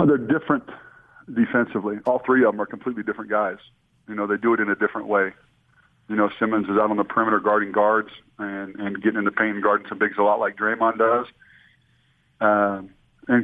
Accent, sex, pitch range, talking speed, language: American, male, 105-115 Hz, 210 wpm, English